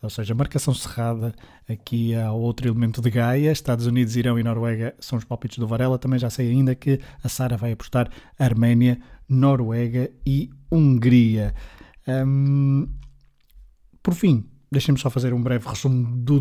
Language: Portuguese